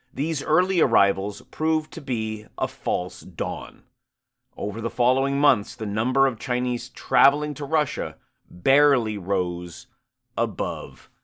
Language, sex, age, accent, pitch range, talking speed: English, male, 40-59, American, 115-140 Hz, 125 wpm